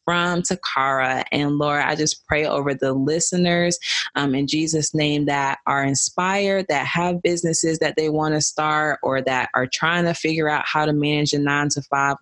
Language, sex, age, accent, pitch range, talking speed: English, female, 20-39, American, 135-155 Hz, 190 wpm